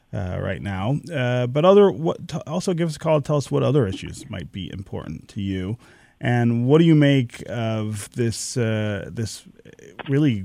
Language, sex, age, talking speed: English, male, 30-49, 195 wpm